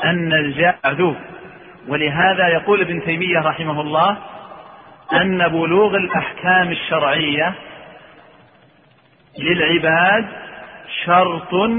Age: 40-59